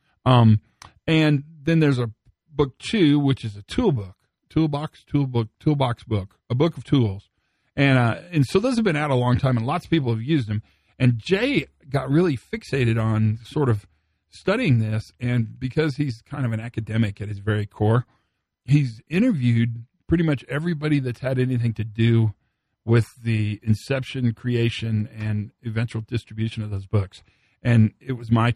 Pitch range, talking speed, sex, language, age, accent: 110-140 Hz, 175 wpm, male, English, 40-59, American